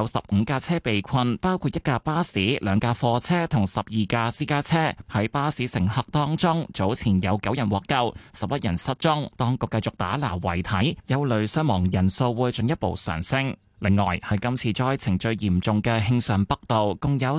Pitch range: 100-145 Hz